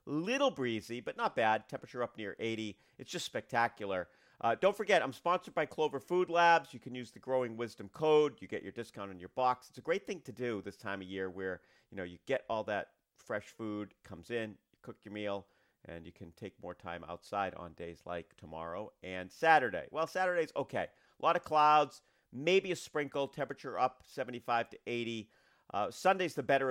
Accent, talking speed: American, 205 wpm